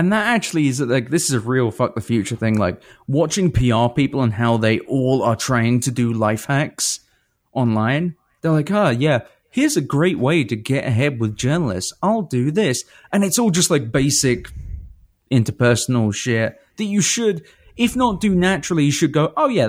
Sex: male